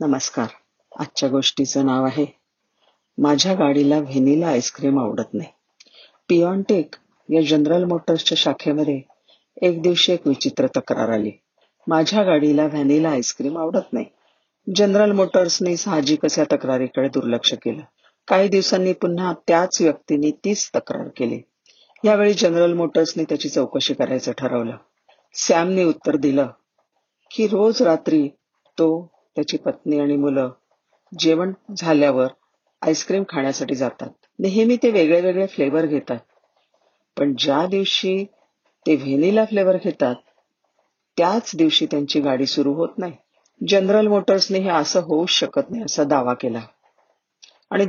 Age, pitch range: 40-59, 145-190 Hz